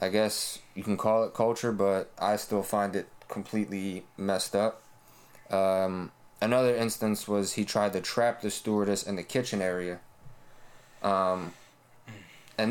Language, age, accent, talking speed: English, 20-39, American, 145 wpm